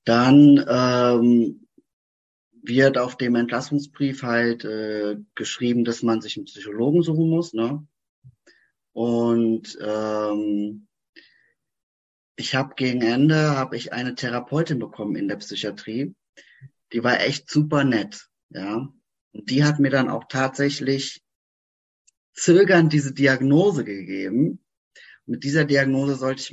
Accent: German